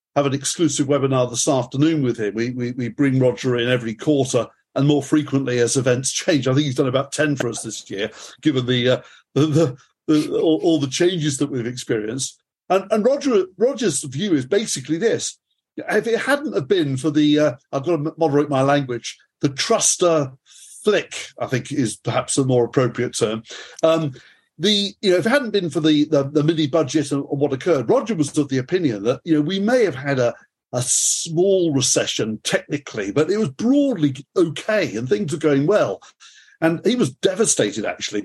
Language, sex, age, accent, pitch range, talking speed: English, male, 50-69, British, 130-165 Hz, 200 wpm